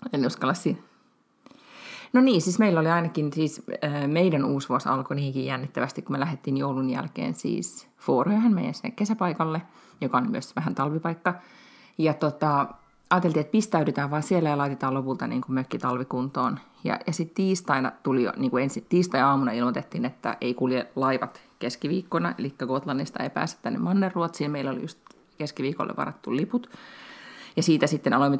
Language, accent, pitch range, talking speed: Finnish, native, 135-190 Hz, 165 wpm